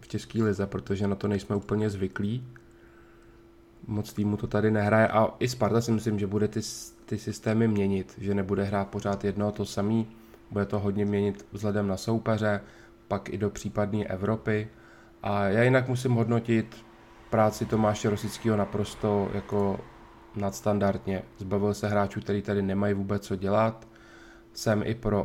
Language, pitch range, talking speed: Czech, 100-110 Hz, 160 wpm